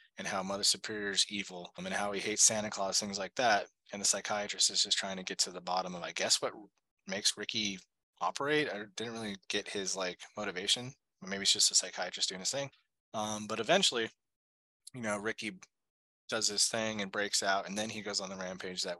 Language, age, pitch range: English, 20-39, 100-125 Hz